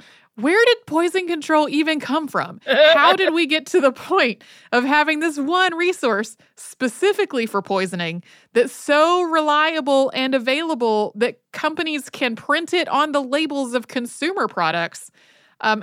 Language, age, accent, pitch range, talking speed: English, 30-49, American, 200-280 Hz, 150 wpm